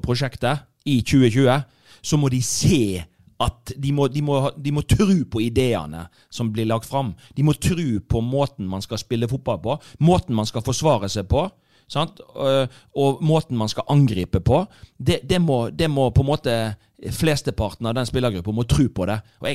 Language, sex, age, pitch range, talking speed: English, male, 40-59, 110-140 Hz, 180 wpm